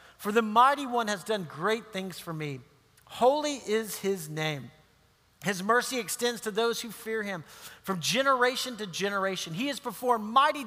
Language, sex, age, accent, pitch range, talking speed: English, male, 40-59, American, 175-240 Hz, 170 wpm